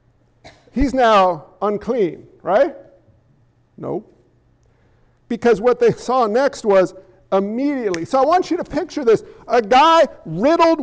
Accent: American